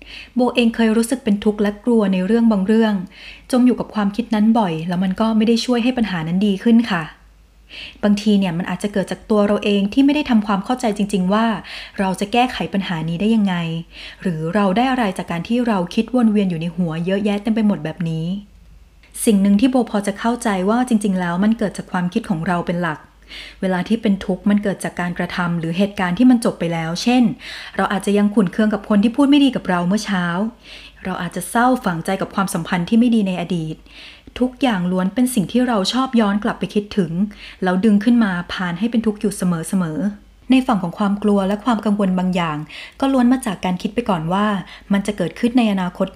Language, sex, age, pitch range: Thai, female, 20-39, 185-225 Hz